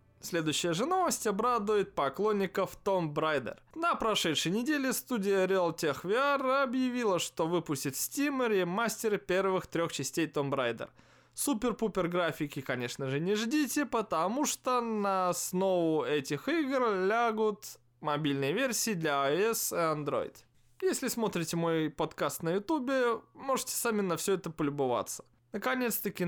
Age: 20-39